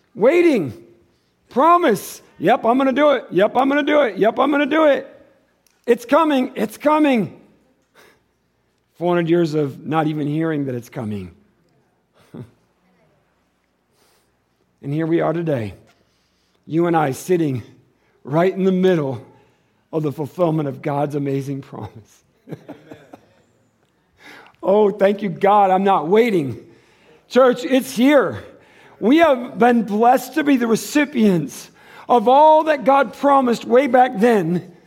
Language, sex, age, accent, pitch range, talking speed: English, male, 50-69, American, 175-285 Hz, 135 wpm